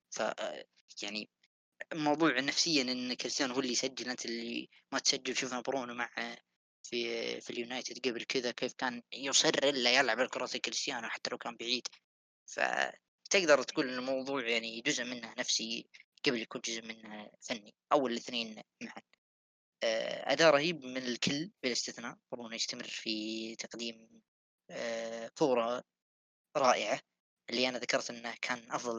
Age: 20-39